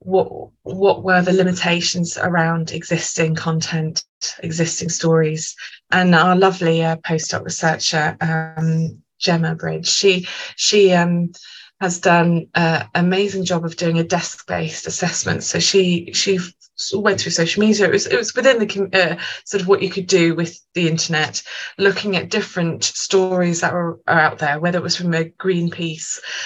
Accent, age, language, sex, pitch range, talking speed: British, 20-39, English, female, 160-185 Hz, 160 wpm